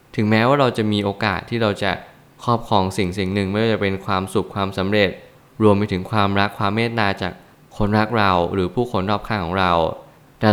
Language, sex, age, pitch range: Thai, male, 20-39, 95-120 Hz